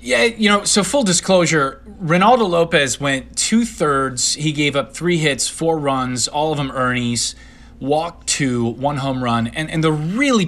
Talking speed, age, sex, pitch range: 170 wpm, 30-49, male, 125-175 Hz